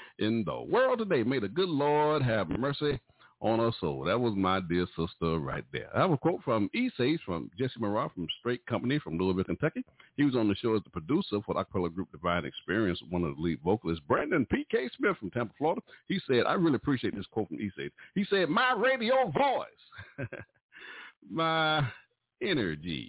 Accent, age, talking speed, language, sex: American, 50-69, 195 wpm, English, male